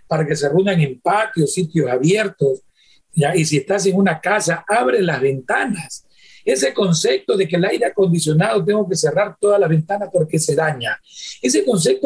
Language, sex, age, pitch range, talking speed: Spanish, male, 40-59, 160-220 Hz, 180 wpm